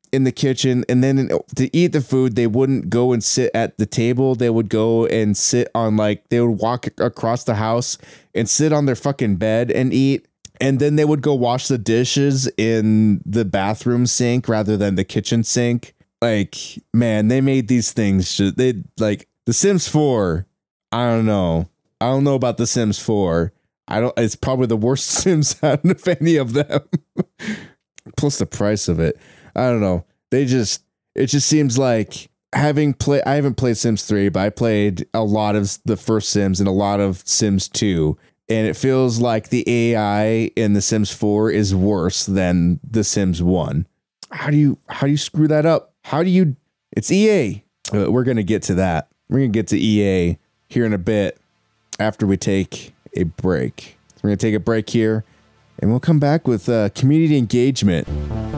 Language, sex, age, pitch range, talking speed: English, male, 20-39, 105-135 Hz, 190 wpm